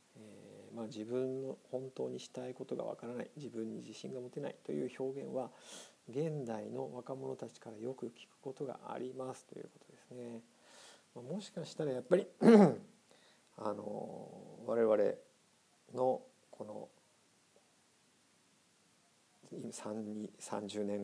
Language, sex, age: Japanese, male, 50-69